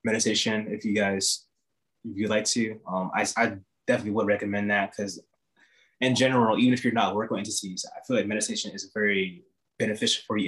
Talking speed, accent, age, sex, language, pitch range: 195 wpm, American, 20-39, male, English, 95-125 Hz